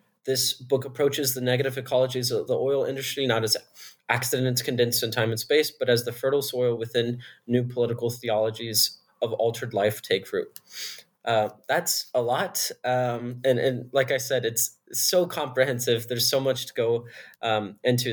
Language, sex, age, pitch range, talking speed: English, male, 20-39, 115-130 Hz, 170 wpm